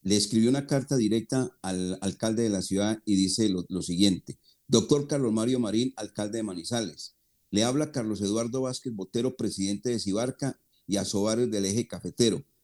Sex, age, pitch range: male, 40-59, 105-130 Hz